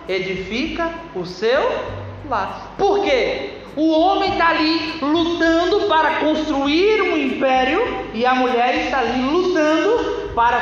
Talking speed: 125 wpm